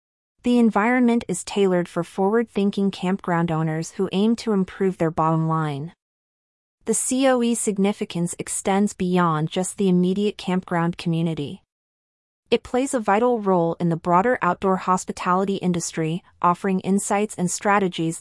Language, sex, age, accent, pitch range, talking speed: English, female, 30-49, American, 175-205 Hz, 130 wpm